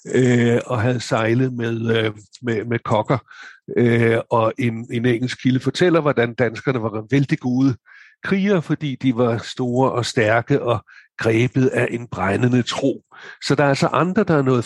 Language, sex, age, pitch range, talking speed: Danish, male, 60-79, 115-140 Hz, 160 wpm